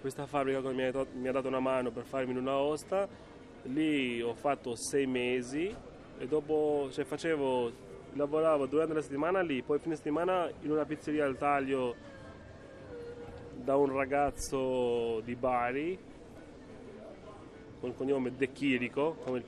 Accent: native